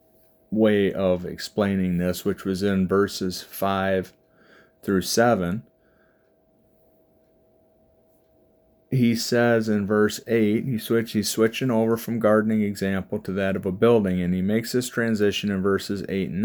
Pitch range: 95-110 Hz